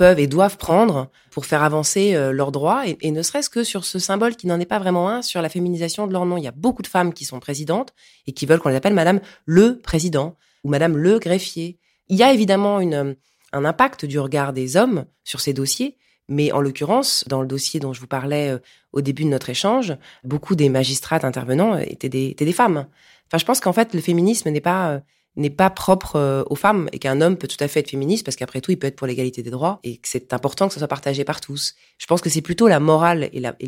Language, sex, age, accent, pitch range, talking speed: French, female, 20-39, French, 135-180 Hz, 255 wpm